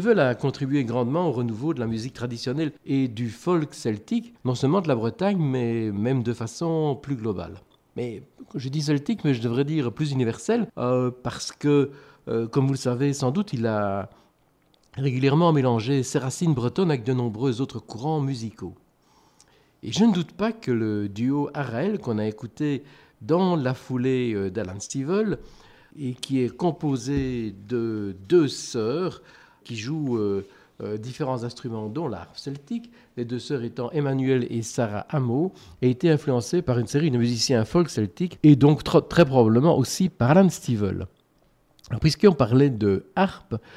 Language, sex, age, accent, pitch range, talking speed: French, male, 50-69, French, 120-155 Hz, 165 wpm